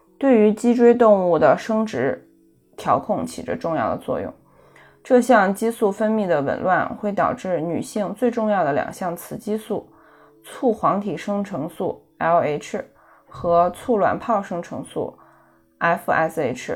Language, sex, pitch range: Chinese, female, 170-225 Hz